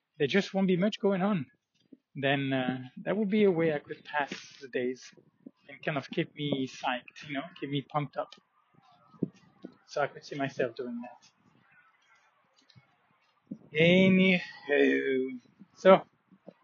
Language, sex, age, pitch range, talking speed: English, male, 20-39, 135-180 Hz, 145 wpm